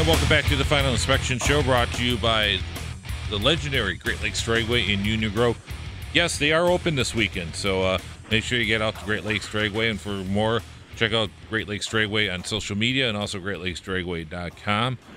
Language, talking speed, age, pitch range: English, 200 wpm, 40-59, 95-120 Hz